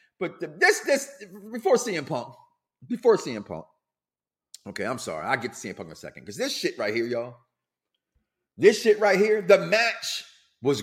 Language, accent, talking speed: English, American, 185 wpm